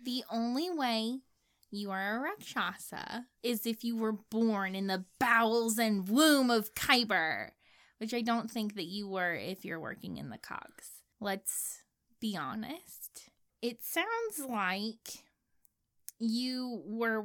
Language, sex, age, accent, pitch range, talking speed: English, female, 10-29, American, 205-275 Hz, 140 wpm